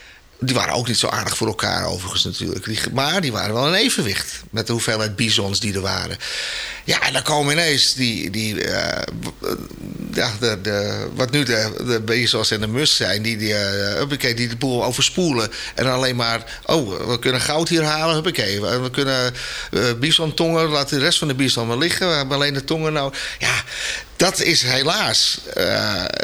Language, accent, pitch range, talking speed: Dutch, Dutch, 110-150 Hz, 190 wpm